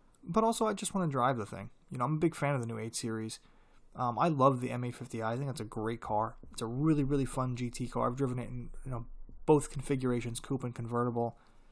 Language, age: English, 20-39